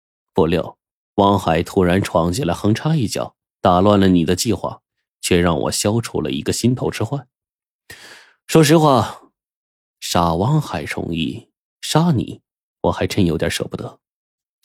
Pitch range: 85-120 Hz